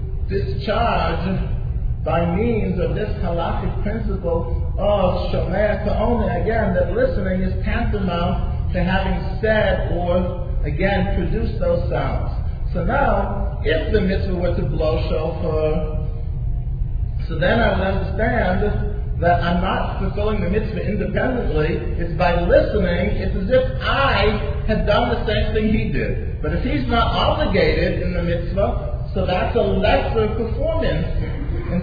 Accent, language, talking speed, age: American, English, 135 wpm, 40-59